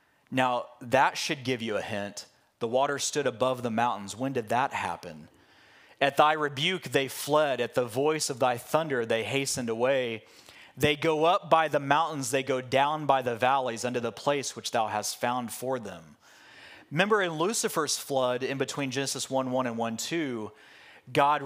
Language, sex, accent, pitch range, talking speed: English, male, American, 120-140 Hz, 180 wpm